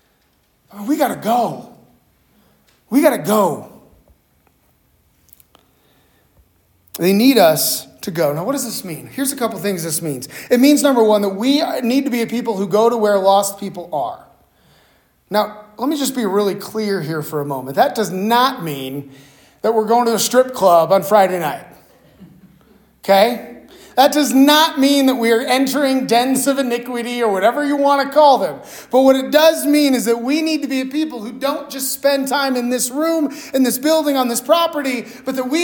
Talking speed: 190 wpm